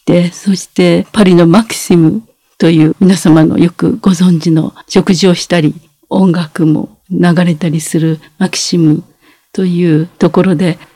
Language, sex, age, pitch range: Japanese, female, 50-69, 165-195 Hz